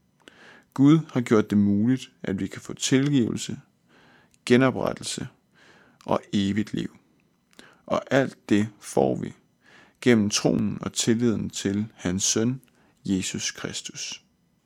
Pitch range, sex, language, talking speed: 105-125 Hz, male, Danish, 115 wpm